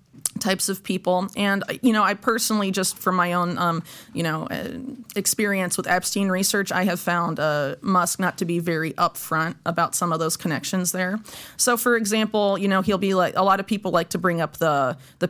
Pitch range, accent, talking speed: 165-200 Hz, American, 210 wpm